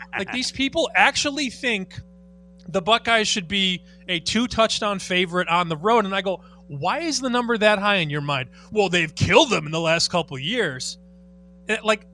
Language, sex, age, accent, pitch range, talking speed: English, male, 30-49, American, 180-230 Hz, 195 wpm